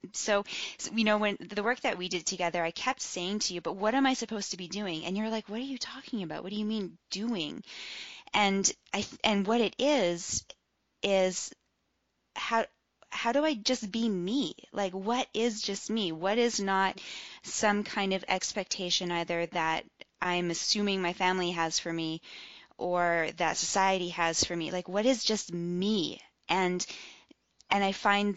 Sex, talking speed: female, 185 wpm